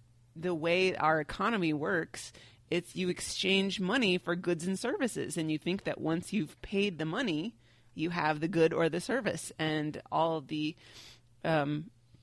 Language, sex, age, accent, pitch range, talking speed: English, female, 30-49, American, 140-175 Hz, 160 wpm